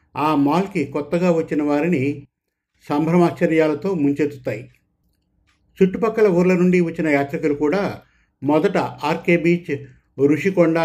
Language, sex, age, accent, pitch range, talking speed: Telugu, male, 50-69, native, 145-175 Hz, 95 wpm